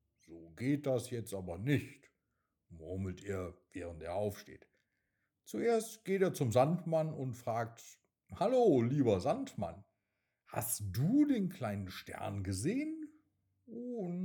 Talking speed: 120 wpm